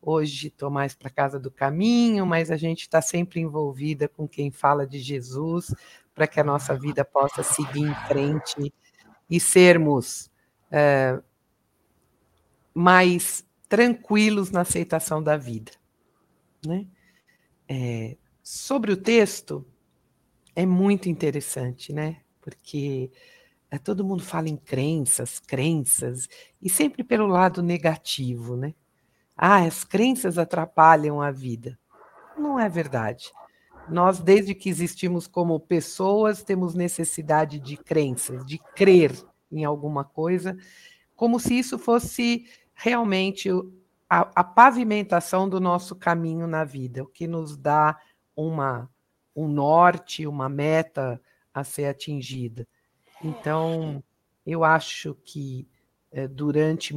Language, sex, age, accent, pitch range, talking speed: Portuguese, female, 60-79, Brazilian, 140-180 Hz, 120 wpm